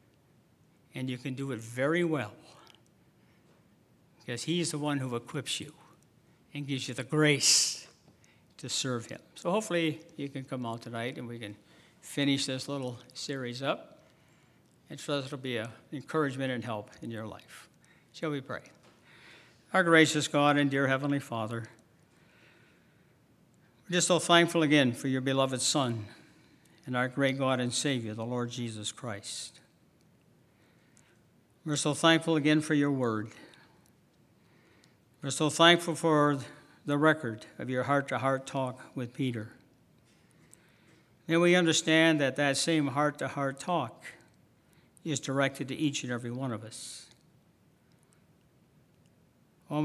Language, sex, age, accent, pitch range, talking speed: English, male, 60-79, American, 125-155 Hz, 140 wpm